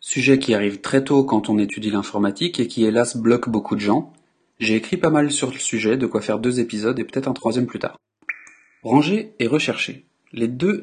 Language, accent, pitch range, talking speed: French, French, 110-135 Hz, 215 wpm